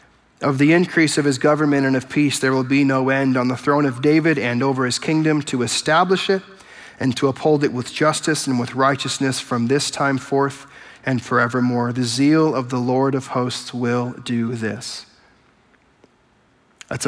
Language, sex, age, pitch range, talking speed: English, male, 40-59, 130-160 Hz, 185 wpm